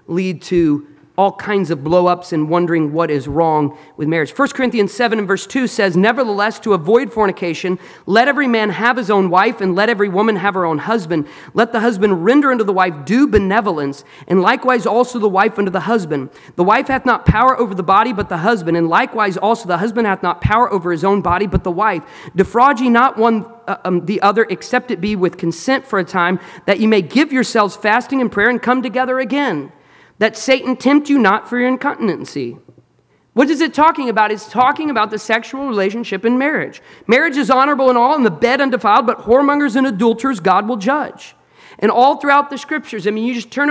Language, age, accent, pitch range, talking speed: English, 40-59, American, 195-255 Hz, 215 wpm